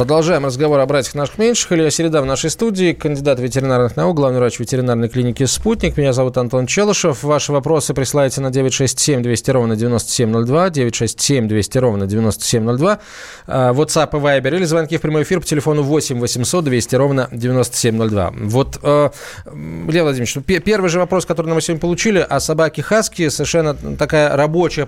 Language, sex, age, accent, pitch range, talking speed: Russian, male, 20-39, native, 120-160 Hz, 160 wpm